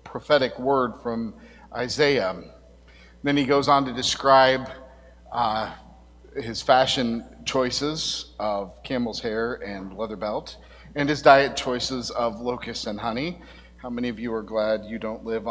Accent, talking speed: American, 145 wpm